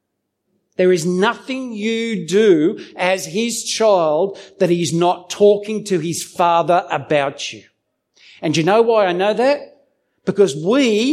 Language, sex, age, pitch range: English, male, 50-69, 140-220 Hz